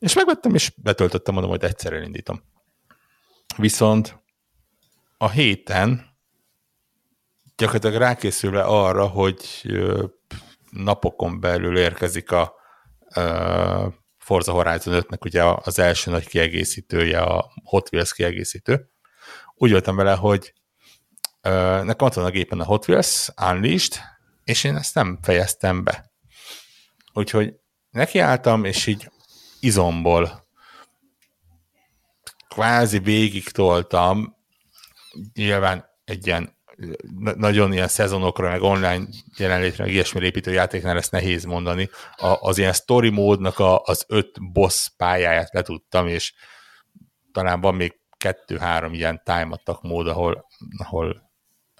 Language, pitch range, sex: Hungarian, 85-105 Hz, male